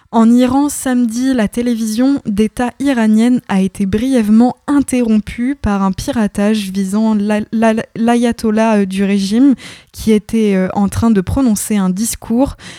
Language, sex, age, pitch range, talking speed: French, female, 20-39, 195-230 Hz, 125 wpm